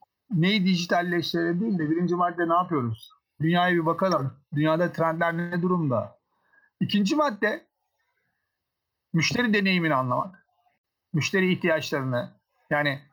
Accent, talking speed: native, 100 wpm